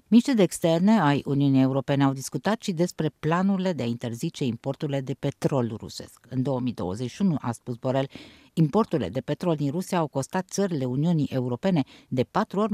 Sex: female